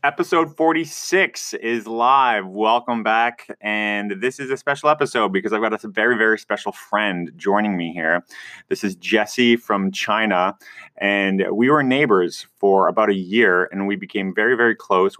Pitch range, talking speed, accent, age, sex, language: 105-130 Hz, 165 wpm, American, 30-49, male, English